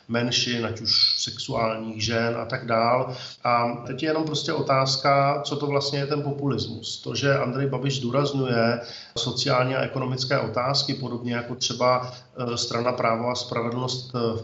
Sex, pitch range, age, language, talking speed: male, 115-130 Hz, 40-59, Slovak, 155 wpm